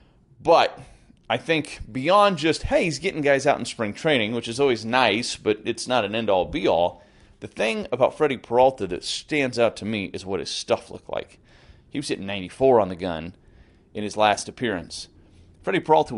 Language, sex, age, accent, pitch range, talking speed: English, male, 30-49, American, 95-130 Hz, 195 wpm